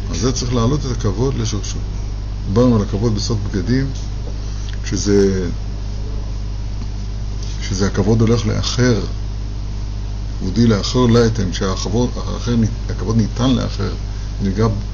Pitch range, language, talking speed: 100-120 Hz, Hebrew, 90 wpm